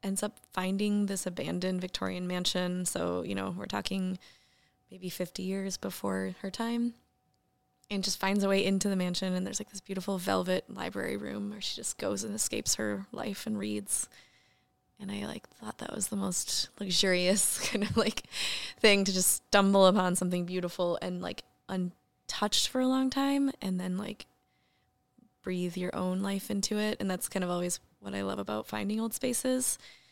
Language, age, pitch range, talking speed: English, 20-39, 180-205 Hz, 180 wpm